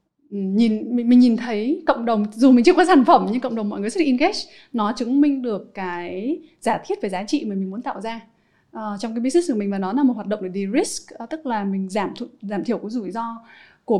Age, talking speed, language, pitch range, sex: 20-39, 265 wpm, Vietnamese, 210-280 Hz, female